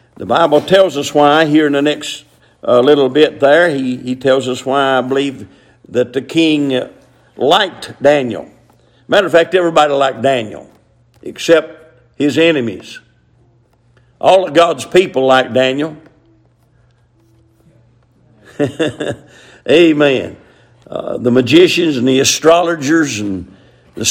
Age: 50-69